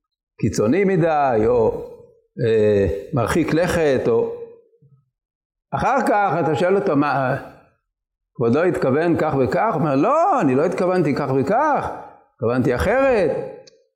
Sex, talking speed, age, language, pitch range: male, 120 wpm, 50-69, Hebrew, 155-210 Hz